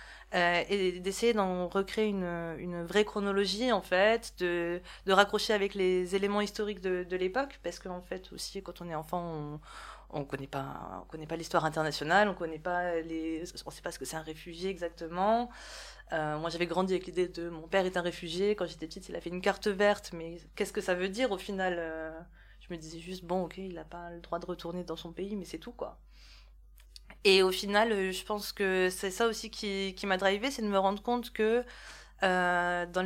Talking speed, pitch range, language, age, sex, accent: 225 wpm, 170-205 Hz, French, 20-39, female, French